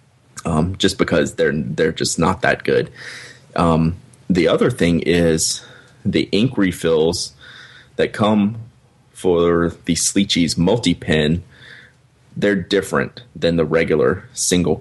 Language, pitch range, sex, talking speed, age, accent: English, 85-105 Hz, male, 120 wpm, 30-49, American